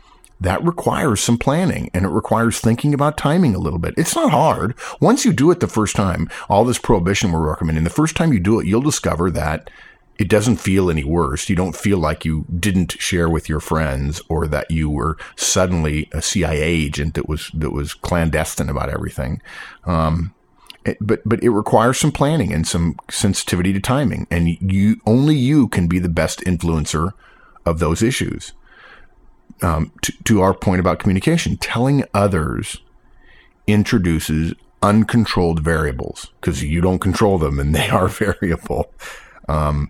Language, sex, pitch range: English, male, 80-105 Hz